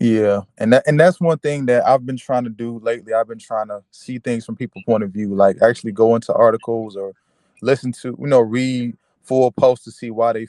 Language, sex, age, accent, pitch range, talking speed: English, male, 20-39, American, 110-130 Hz, 240 wpm